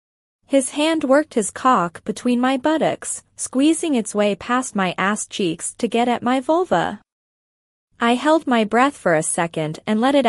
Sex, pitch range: female, 205-275 Hz